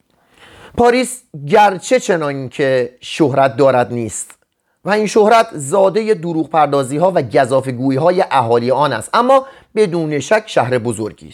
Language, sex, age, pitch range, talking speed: Persian, male, 30-49, 140-195 Hz, 130 wpm